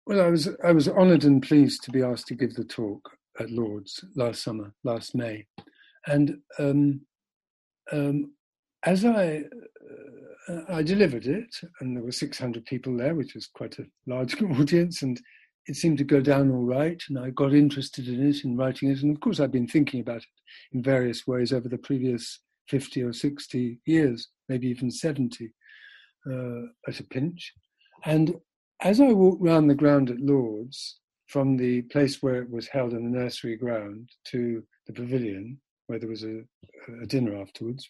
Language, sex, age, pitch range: English, male, 50-69, 120-155 Hz